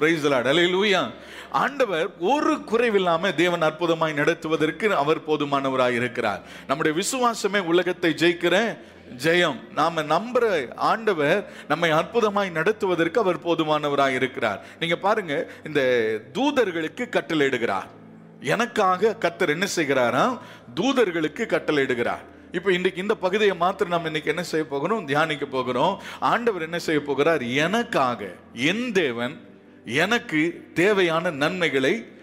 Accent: native